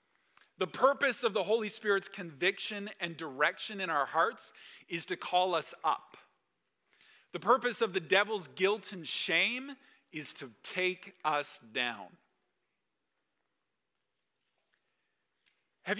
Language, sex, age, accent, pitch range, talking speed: English, male, 40-59, American, 160-215 Hz, 115 wpm